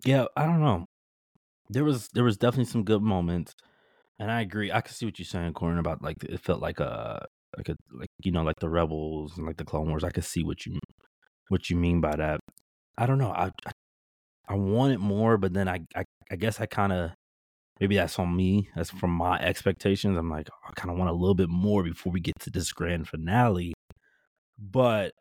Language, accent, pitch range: English, American, 80-100 Hz